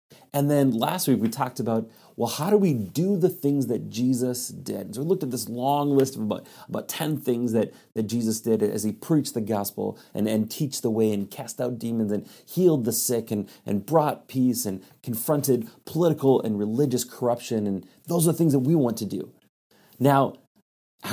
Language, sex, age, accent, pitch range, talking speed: English, male, 30-49, American, 115-155 Hz, 205 wpm